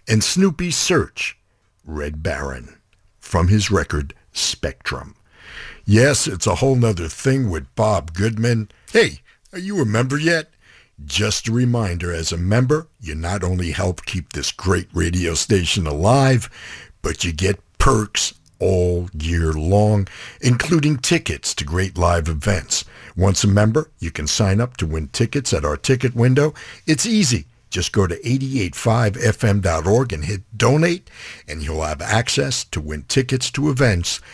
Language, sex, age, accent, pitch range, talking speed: English, male, 60-79, American, 85-130 Hz, 150 wpm